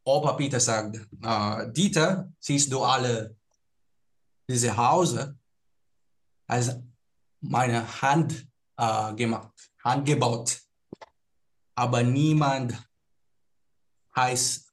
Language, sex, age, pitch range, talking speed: Filipino, male, 20-39, 115-145 Hz, 80 wpm